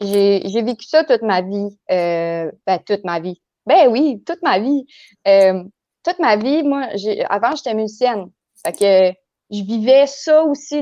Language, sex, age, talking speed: French, female, 30-49, 175 wpm